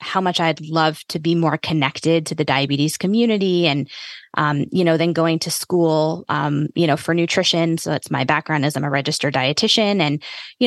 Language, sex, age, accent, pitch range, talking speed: English, female, 20-39, American, 150-170 Hz, 200 wpm